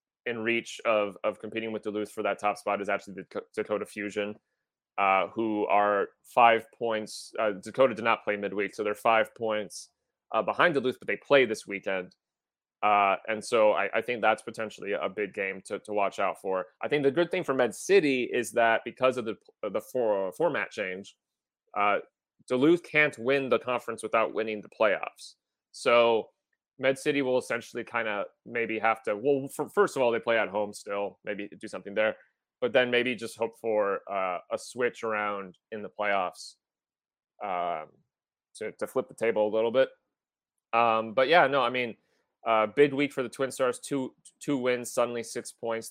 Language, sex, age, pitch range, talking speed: English, male, 30-49, 105-125 Hz, 195 wpm